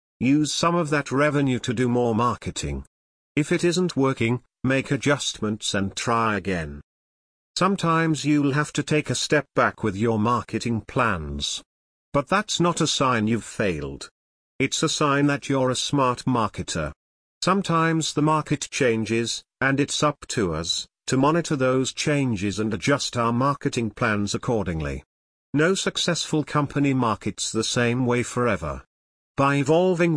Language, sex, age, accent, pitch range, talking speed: English, male, 50-69, British, 110-145 Hz, 145 wpm